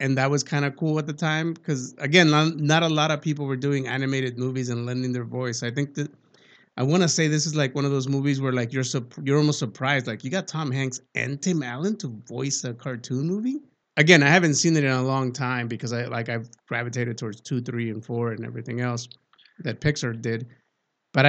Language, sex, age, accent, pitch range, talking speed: English, male, 30-49, American, 125-150 Hz, 235 wpm